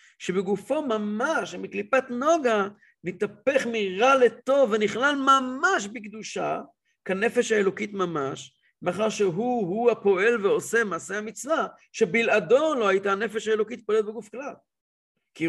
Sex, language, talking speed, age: male, English, 110 wpm, 50-69